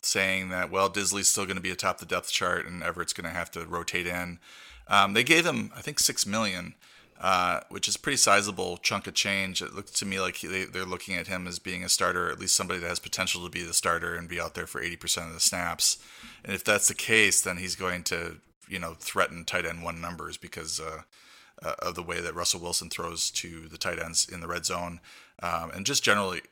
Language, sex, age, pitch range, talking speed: English, male, 30-49, 85-95 Hz, 245 wpm